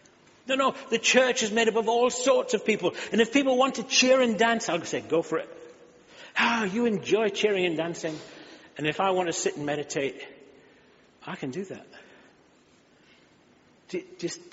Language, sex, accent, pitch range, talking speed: English, male, British, 155-225 Hz, 180 wpm